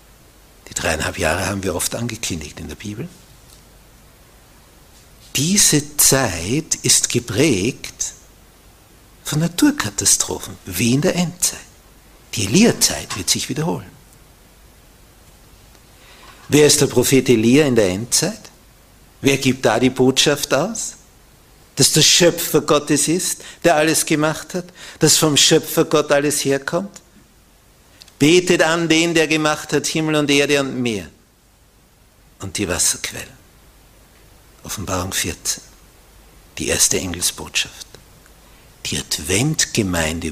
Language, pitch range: German, 95-150 Hz